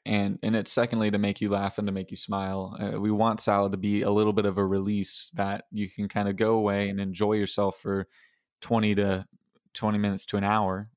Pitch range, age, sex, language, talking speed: 100-110 Hz, 20-39, male, English, 235 wpm